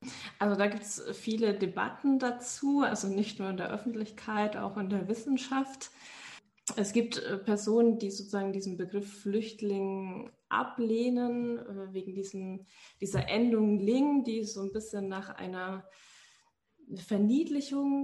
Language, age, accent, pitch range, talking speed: German, 20-39, German, 195-230 Hz, 130 wpm